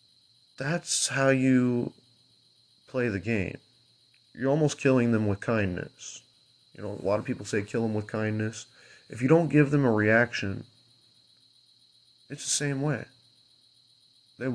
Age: 30-49